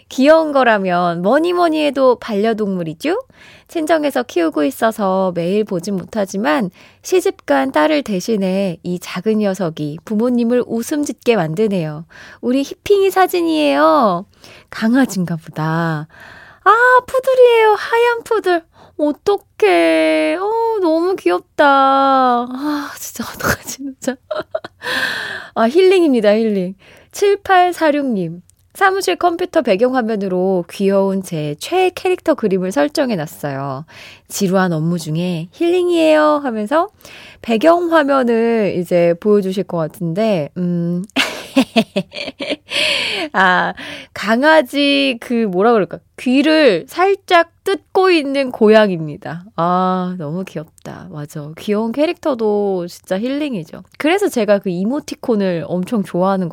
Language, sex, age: Korean, female, 20-39